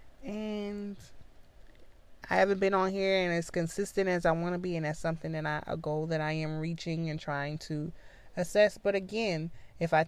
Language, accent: English, American